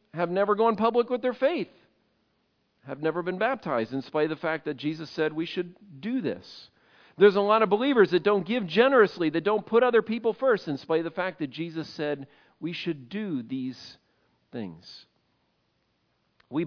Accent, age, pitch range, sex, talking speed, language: American, 50-69, 150-210 Hz, male, 185 wpm, English